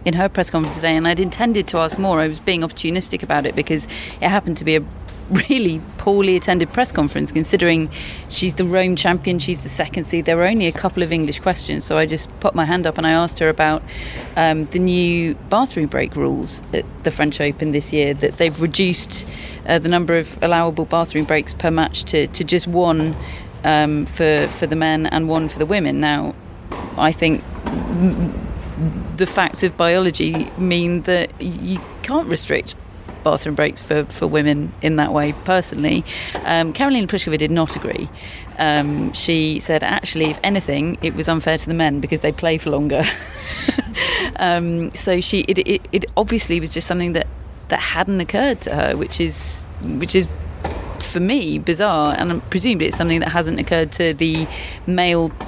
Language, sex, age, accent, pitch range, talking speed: English, female, 30-49, British, 155-180 Hz, 185 wpm